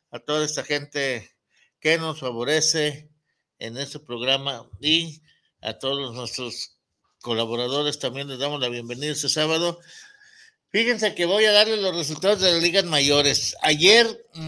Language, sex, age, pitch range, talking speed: Spanish, male, 60-79, 130-170 Hz, 140 wpm